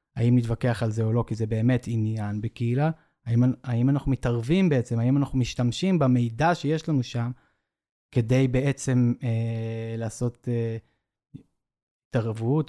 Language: Hebrew